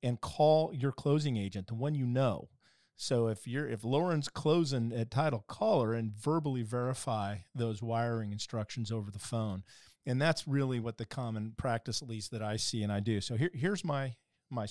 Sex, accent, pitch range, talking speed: male, American, 110-135 Hz, 195 wpm